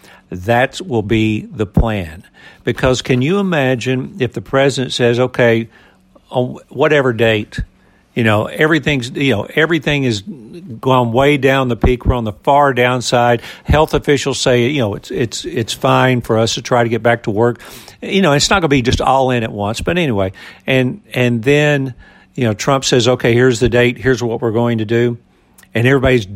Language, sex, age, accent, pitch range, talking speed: English, male, 60-79, American, 110-135 Hz, 195 wpm